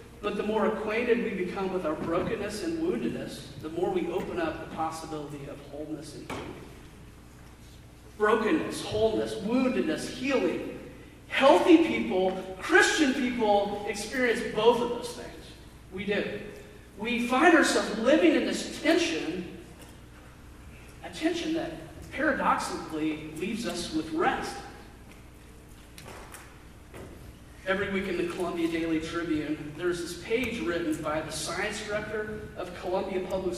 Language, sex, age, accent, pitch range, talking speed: English, male, 40-59, American, 165-235 Hz, 125 wpm